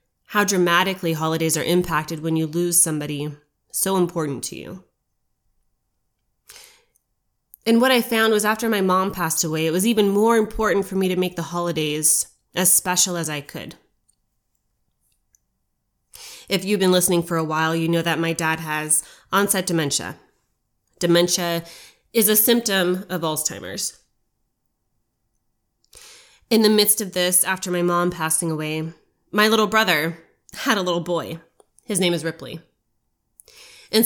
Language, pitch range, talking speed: English, 165-210 Hz, 145 wpm